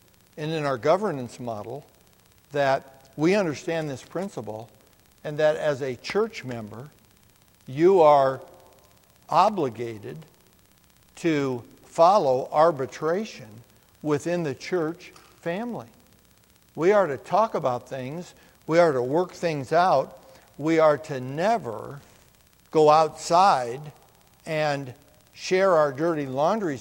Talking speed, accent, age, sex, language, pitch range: 110 wpm, American, 60-79, male, English, 130-170 Hz